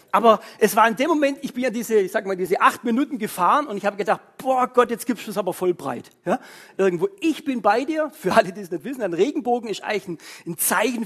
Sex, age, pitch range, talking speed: male, 40-59, 180-250 Hz, 265 wpm